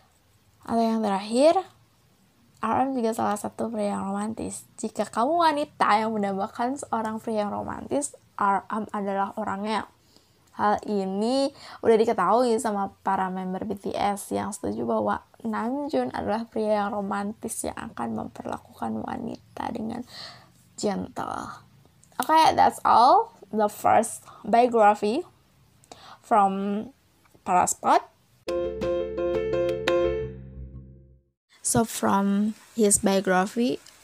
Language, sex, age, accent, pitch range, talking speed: Indonesian, female, 20-39, native, 195-225 Hz, 100 wpm